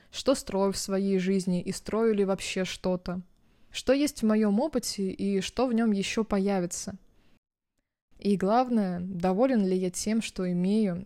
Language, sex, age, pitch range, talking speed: Russian, female, 20-39, 185-215 Hz, 155 wpm